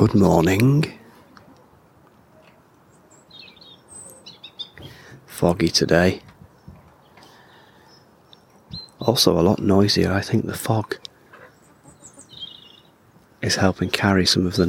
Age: 30-49